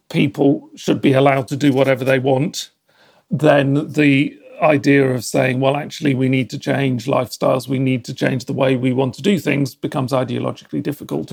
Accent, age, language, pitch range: British, 40-59, English, 130-140 Hz